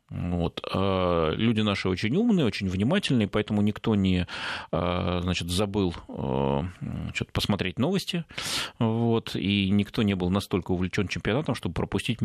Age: 30-49